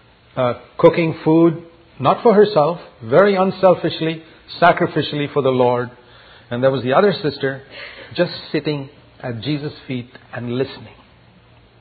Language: English